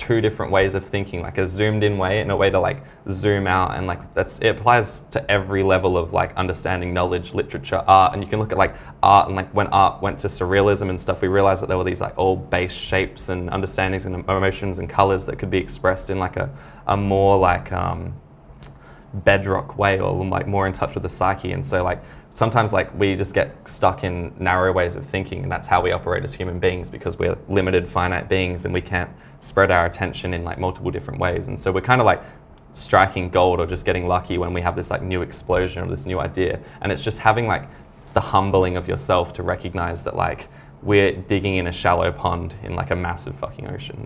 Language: English